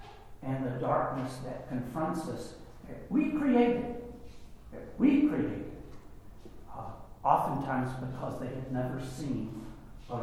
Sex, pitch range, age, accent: male, 125-145 Hz, 60-79, American